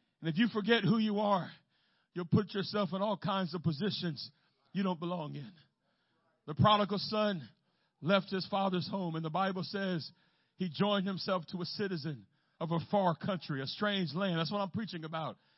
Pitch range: 165-200 Hz